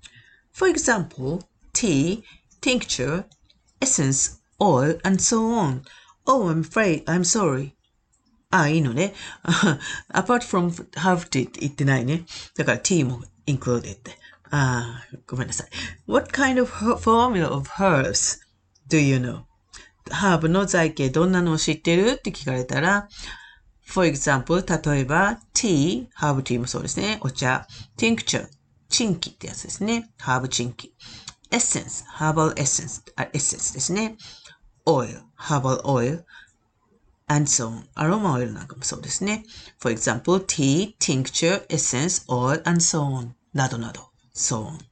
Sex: female